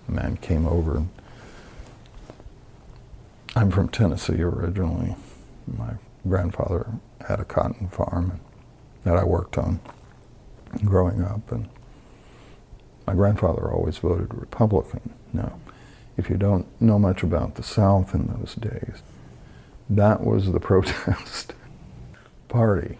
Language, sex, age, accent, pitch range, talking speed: English, male, 60-79, American, 90-115 Hz, 110 wpm